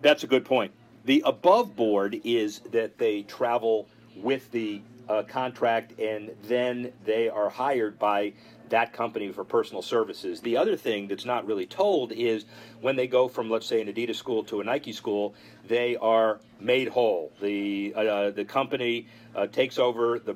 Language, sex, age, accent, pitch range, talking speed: English, male, 40-59, American, 110-135 Hz, 175 wpm